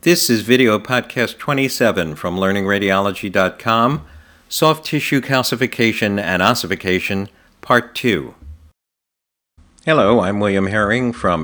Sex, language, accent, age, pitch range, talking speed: male, English, American, 50-69, 90-115 Hz, 100 wpm